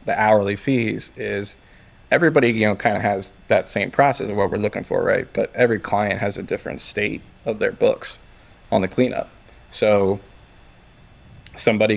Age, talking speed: 20-39, 170 wpm